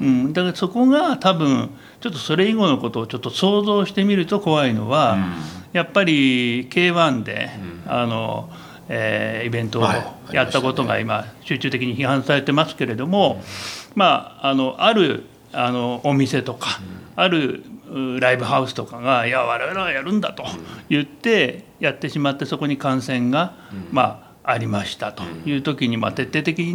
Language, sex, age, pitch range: Japanese, male, 60-79, 120-175 Hz